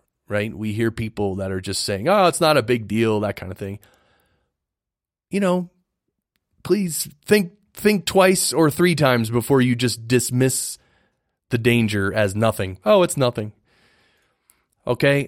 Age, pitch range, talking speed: 30-49, 110-150 Hz, 155 wpm